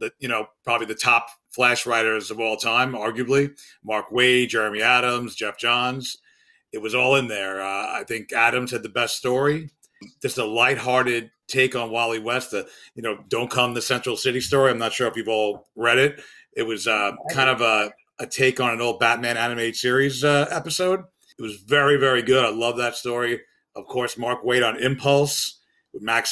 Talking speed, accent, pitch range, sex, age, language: 200 wpm, American, 115-135 Hz, male, 40-59, English